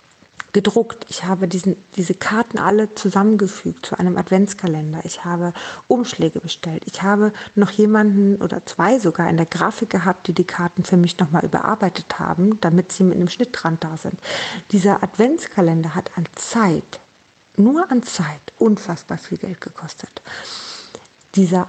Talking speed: 145 wpm